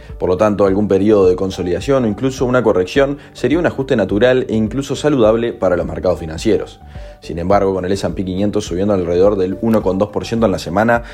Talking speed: 190 wpm